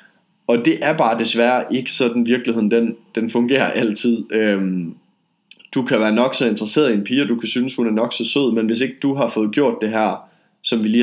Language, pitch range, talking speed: Danish, 115-130 Hz, 235 wpm